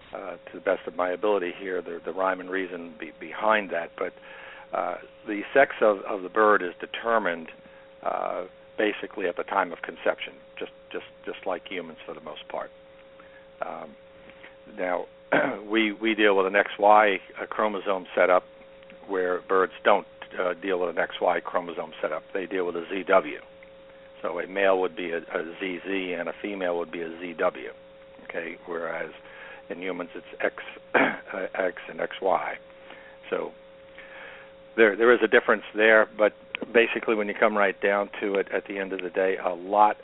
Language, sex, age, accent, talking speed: English, male, 60-79, American, 180 wpm